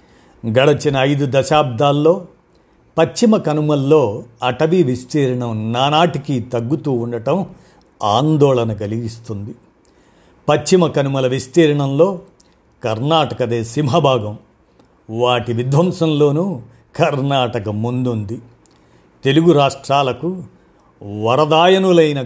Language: Telugu